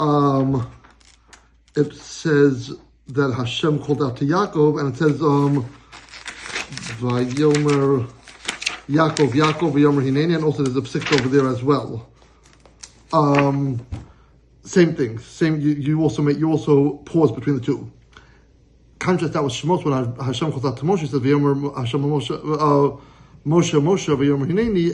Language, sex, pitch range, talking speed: English, male, 135-155 Hz, 145 wpm